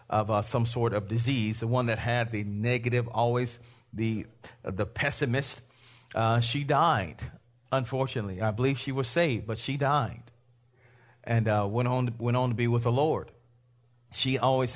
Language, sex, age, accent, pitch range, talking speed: English, male, 40-59, American, 120-180 Hz, 170 wpm